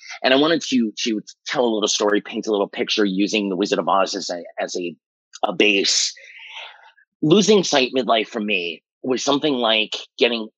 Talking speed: 185 wpm